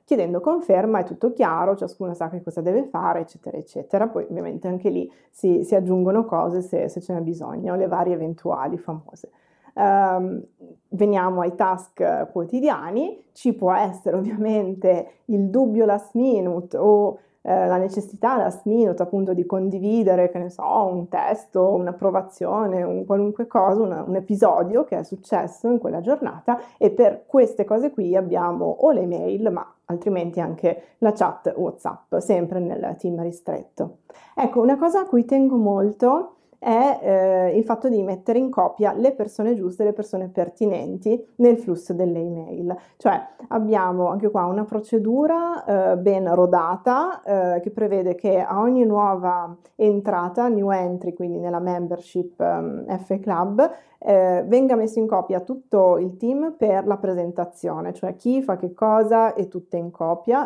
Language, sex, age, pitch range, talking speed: Italian, female, 20-39, 180-225 Hz, 155 wpm